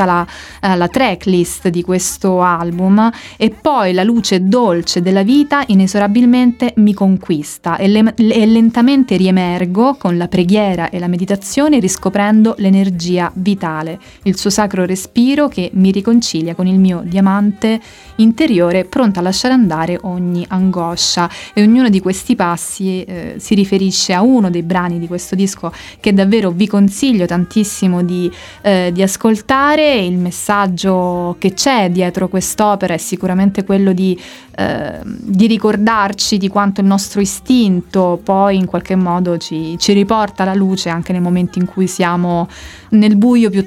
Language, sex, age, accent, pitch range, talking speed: Italian, female, 20-39, native, 180-215 Hz, 145 wpm